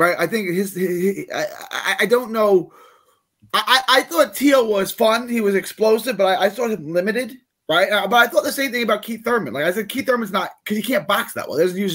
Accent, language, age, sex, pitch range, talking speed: American, English, 20-39, male, 195-245 Hz, 255 wpm